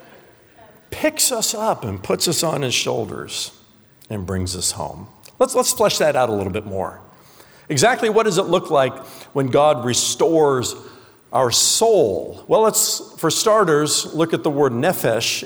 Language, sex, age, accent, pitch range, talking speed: English, male, 50-69, American, 120-180 Hz, 165 wpm